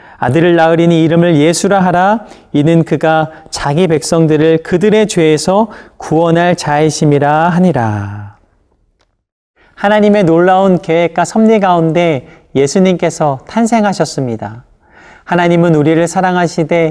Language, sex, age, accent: Korean, male, 40-59, native